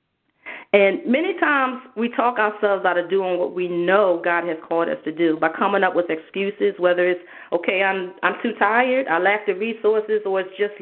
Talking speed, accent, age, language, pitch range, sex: 205 wpm, American, 40-59, English, 175-215 Hz, female